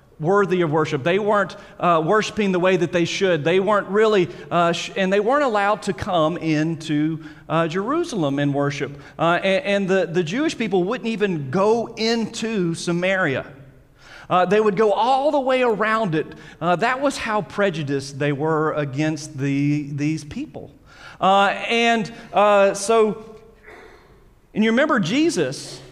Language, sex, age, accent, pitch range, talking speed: English, male, 40-59, American, 155-215 Hz, 155 wpm